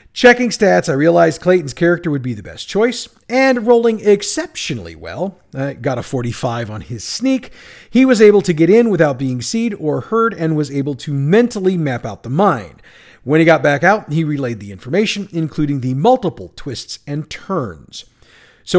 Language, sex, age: English, male, 40-59